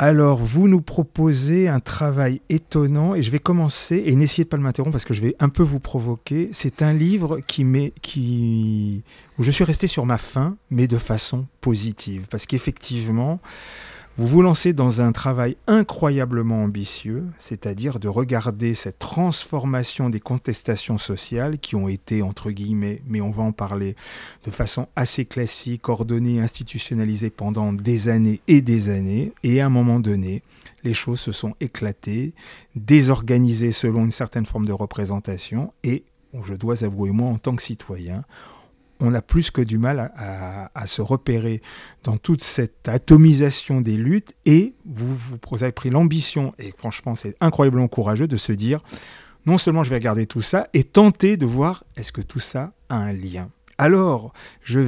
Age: 40-59